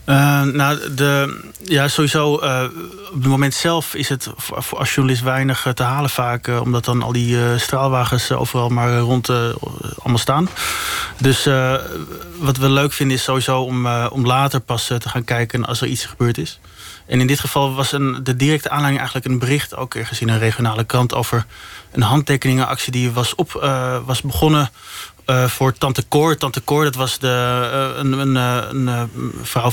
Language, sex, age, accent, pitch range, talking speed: Dutch, male, 30-49, Dutch, 120-140 Hz, 195 wpm